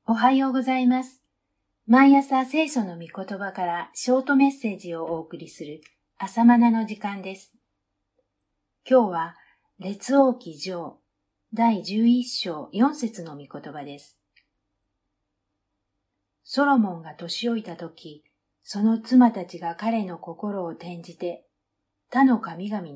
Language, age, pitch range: Japanese, 50-69, 150-220 Hz